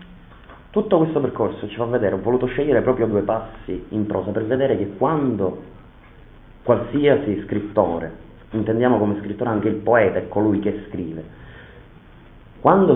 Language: Italian